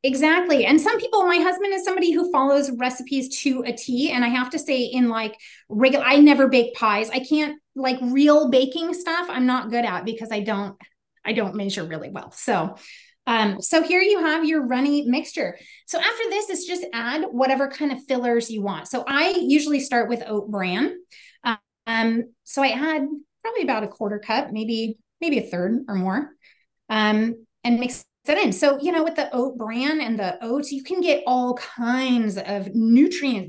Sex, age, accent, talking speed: female, 30-49, American, 190 wpm